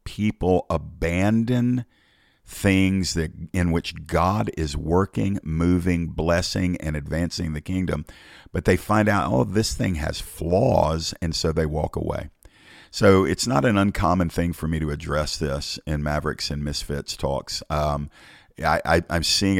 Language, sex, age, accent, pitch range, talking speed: English, male, 50-69, American, 75-95 Hz, 155 wpm